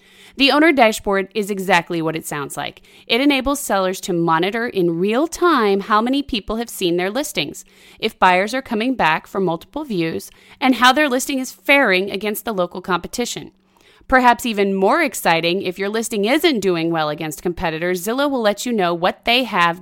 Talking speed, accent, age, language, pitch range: 190 wpm, American, 30-49, English, 185-255 Hz